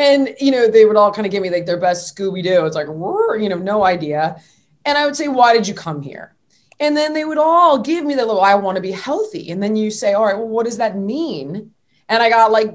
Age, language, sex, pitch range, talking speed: 20-39, English, female, 190-265 Hz, 275 wpm